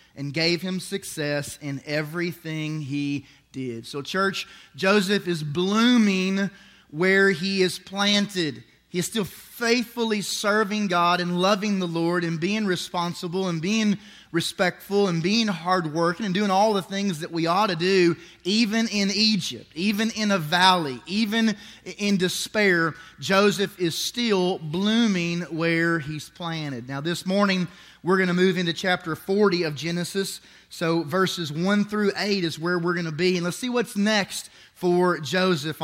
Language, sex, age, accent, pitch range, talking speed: English, male, 30-49, American, 165-200 Hz, 155 wpm